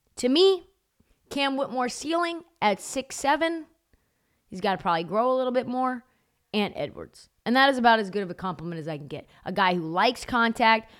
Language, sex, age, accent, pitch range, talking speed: English, female, 30-49, American, 185-255 Hz, 195 wpm